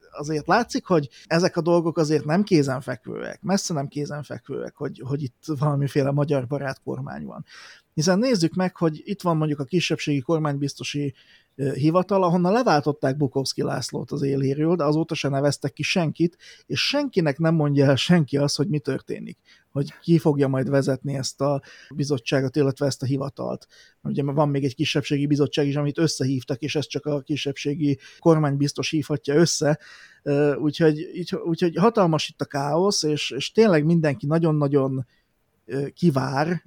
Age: 30-49